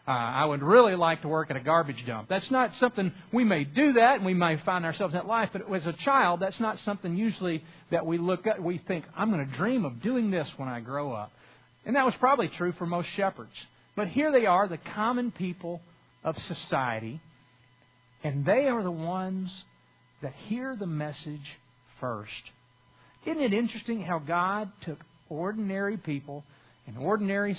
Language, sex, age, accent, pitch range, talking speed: English, male, 50-69, American, 130-180 Hz, 195 wpm